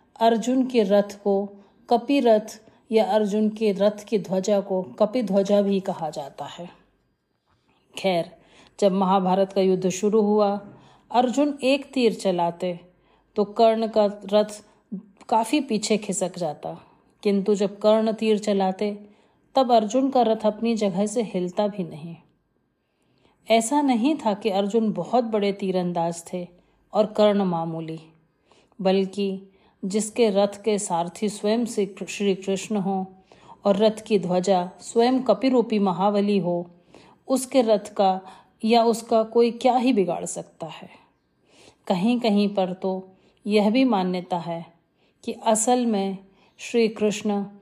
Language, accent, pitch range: Hindi, native, 190-225 Hz